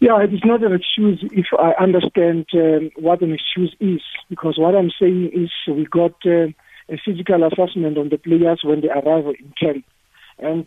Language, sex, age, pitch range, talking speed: English, male, 50-69, 155-185 Hz, 190 wpm